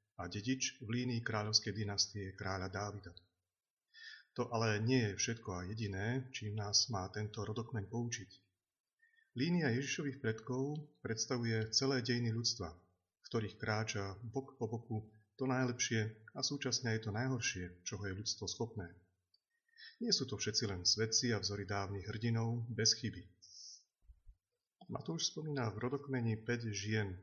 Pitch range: 100-125 Hz